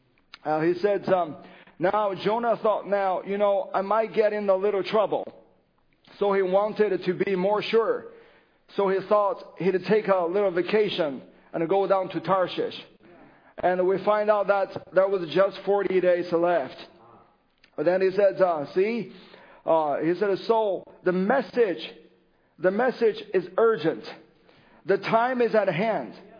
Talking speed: 155 wpm